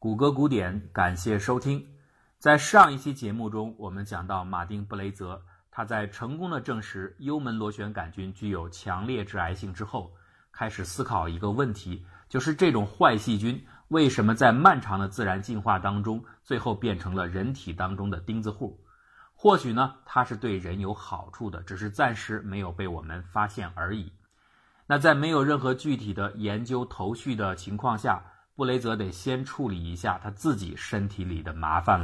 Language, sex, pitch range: Chinese, male, 95-125 Hz